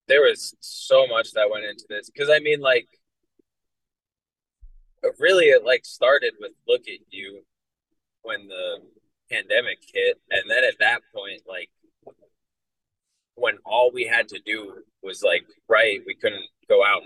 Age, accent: 20-39, American